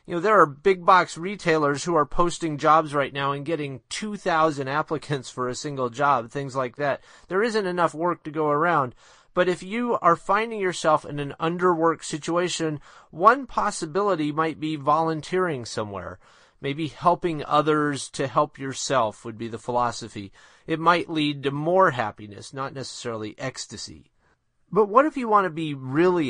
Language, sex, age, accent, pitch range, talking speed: English, male, 30-49, American, 140-175 Hz, 170 wpm